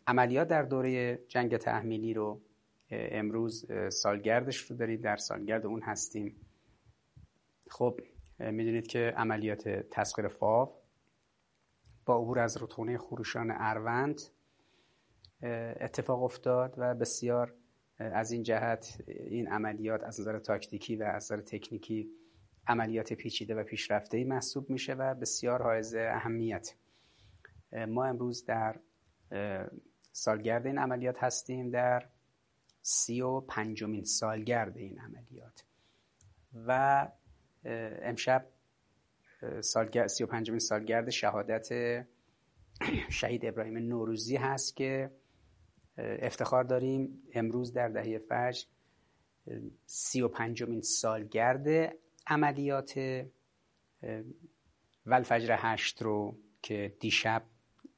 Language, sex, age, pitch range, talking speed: Persian, male, 30-49, 110-125 Hz, 95 wpm